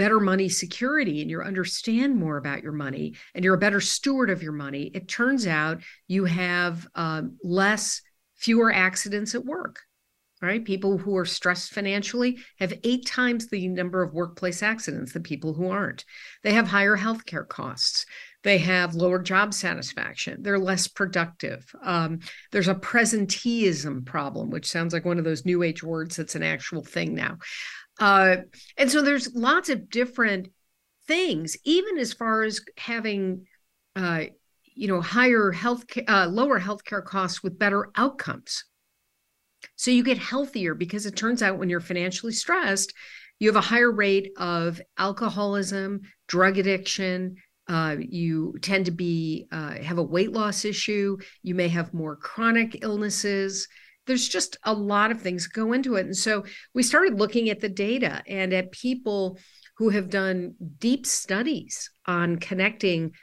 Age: 50-69